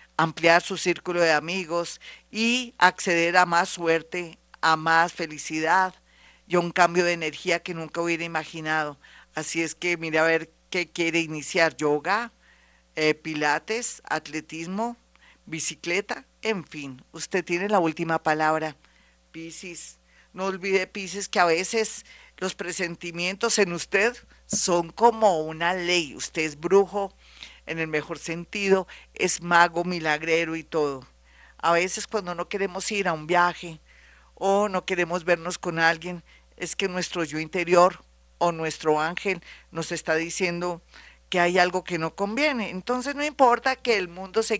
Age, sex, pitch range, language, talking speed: 50-69, female, 160-190 Hz, Spanish, 150 wpm